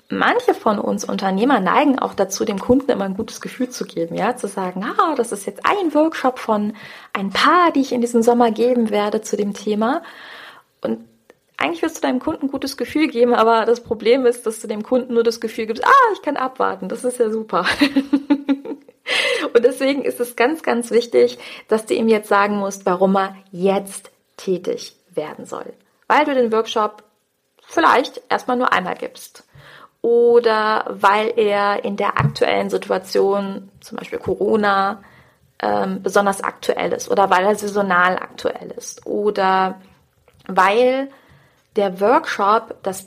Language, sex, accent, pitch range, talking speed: German, female, German, 200-275 Hz, 165 wpm